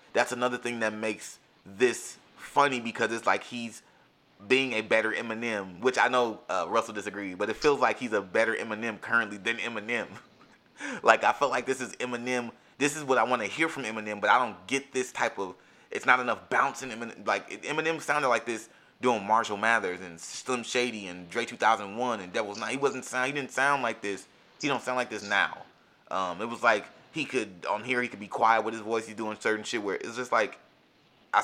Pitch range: 110-130 Hz